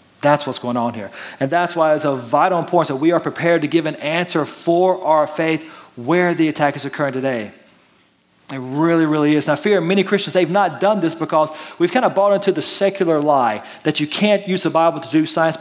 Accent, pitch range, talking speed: American, 150-185 Hz, 230 wpm